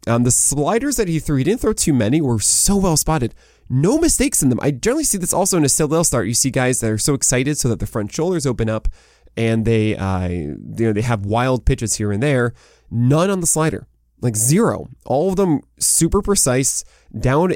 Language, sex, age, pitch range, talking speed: English, male, 20-39, 105-140 Hz, 220 wpm